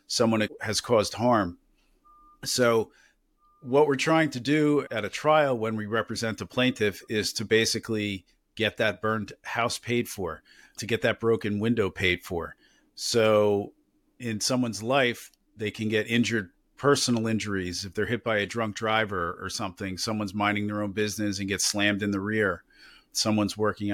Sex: male